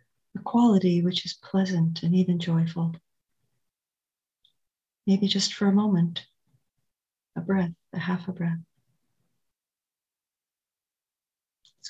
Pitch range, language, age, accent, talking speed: 165-190 Hz, English, 60-79, American, 100 wpm